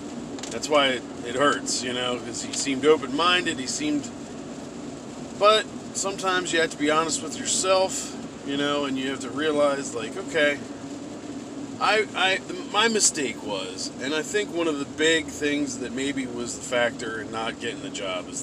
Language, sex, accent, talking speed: English, male, American, 180 wpm